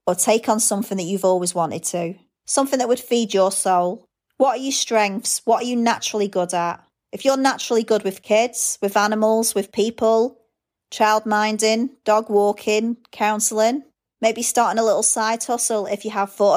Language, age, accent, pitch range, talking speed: English, 30-49, British, 185-225 Hz, 180 wpm